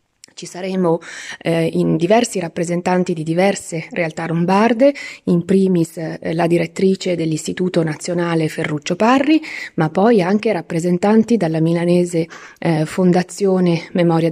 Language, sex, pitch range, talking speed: Italian, female, 175-225 Hz, 115 wpm